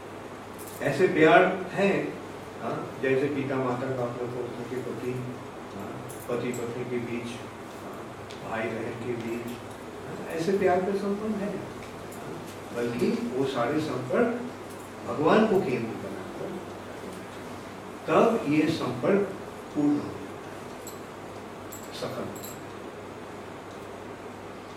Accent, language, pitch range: Indian, English, 120-155 Hz